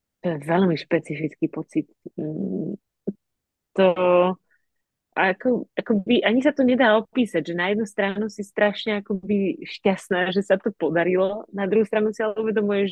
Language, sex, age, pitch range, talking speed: Slovak, female, 30-49, 160-200 Hz, 135 wpm